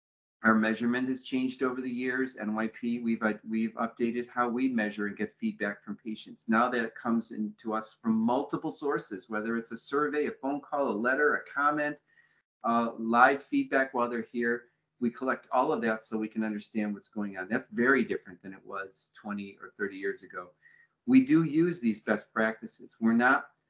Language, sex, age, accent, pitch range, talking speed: English, male, 40-59, American, 110-125 Hz, 195 wpm